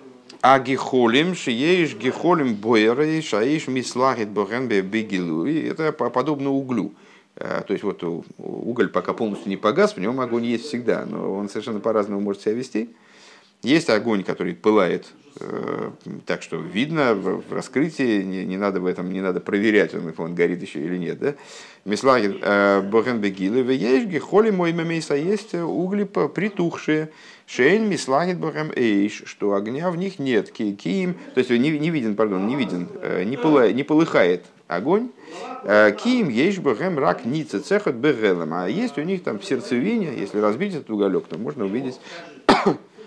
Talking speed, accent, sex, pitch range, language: 140 wpm, native, male, 105-160 Hz, Russian